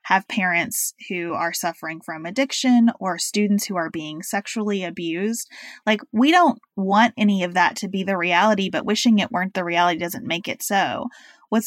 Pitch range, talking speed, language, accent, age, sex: 195-245 Hz, 185 wpm, English, American, 20-39, female